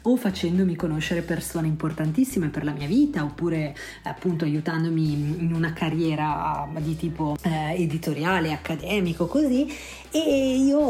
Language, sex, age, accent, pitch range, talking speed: Italian, female, 30-49, native, 160-190 Hz, 125 wpm